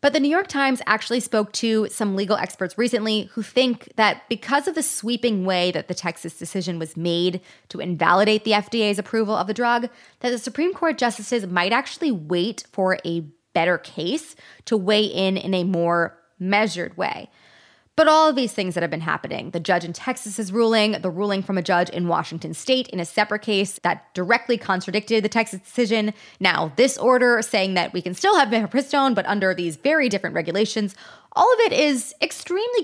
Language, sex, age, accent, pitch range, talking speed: English, female, 20-39, American, 180-240 Hz, 195 wpm